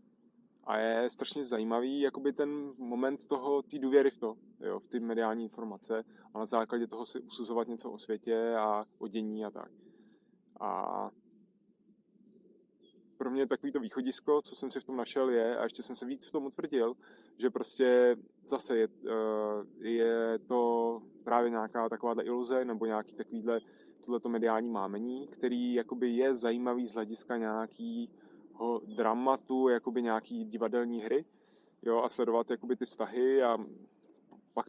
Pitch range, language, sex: 115-135 Hz, Czech, male